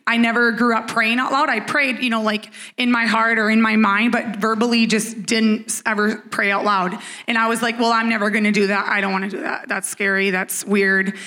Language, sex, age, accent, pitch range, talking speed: English, female, 20-39, American, 210-245 Hz, 245 wpm